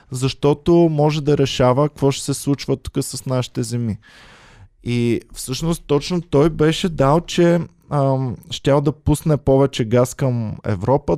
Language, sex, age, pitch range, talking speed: Bulgarian, male, 20-39, 115-140 Hz, 140 wpm